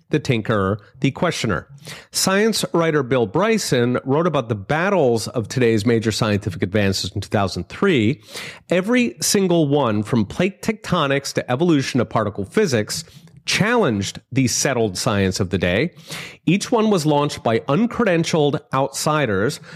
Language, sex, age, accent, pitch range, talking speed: English, male, 30-49, American, 115-160 Hz, 135 wpm